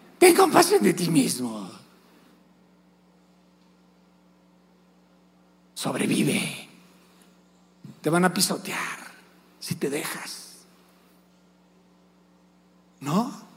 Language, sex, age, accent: Spanish, male, 60-79, Mexican